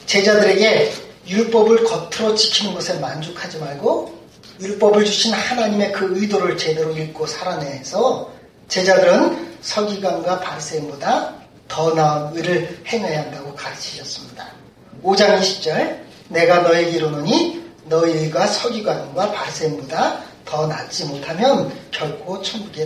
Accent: native